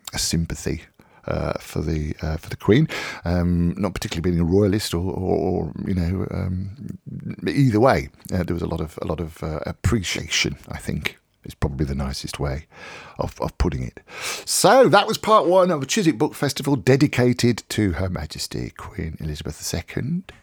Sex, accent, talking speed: male, British, 180 wpm